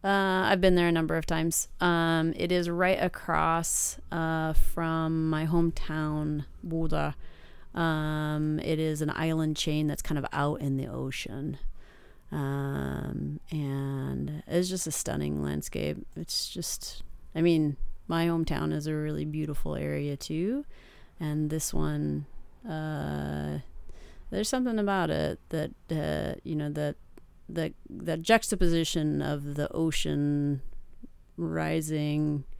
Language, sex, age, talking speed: English, female, 30-49, 125 wpm